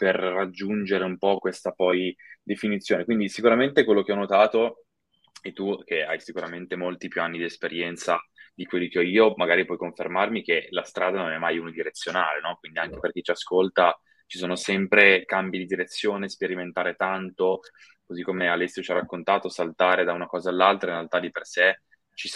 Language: Italian